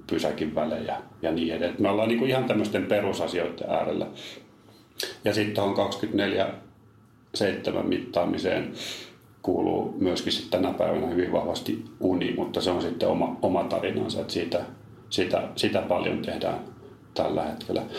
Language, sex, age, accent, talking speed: Finnish, male, 40-59, native, 130 wpm